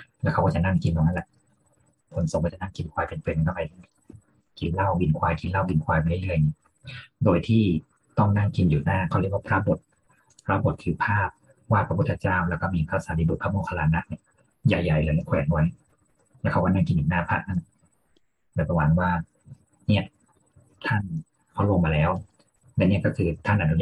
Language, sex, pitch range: Thai, male, 80-105 Hz